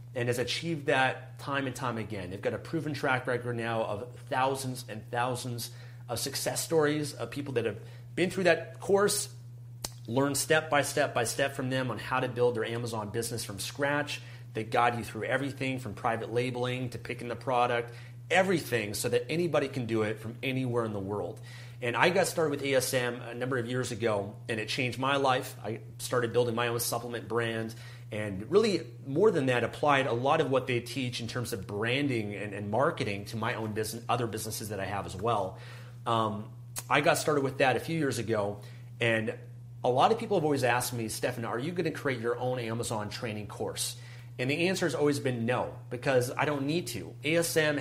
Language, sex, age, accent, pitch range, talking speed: English, male, 30-49, American, 115-135 Hz, 210 wpm